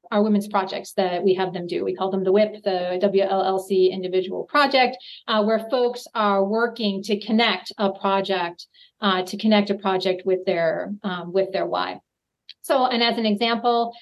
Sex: female